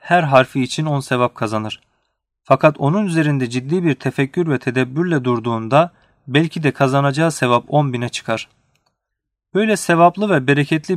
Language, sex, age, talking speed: Turkish, male, 40-59, 140 wpm